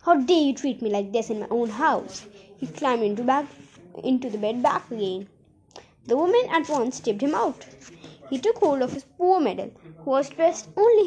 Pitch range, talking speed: 230-345 Hz, 205 wpm